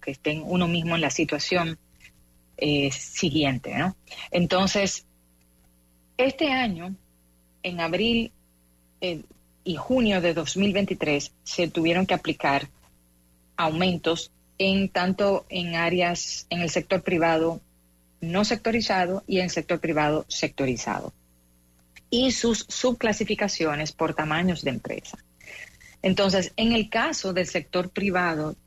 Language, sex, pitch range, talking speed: English, female, 140-185 Hz, 115 wpm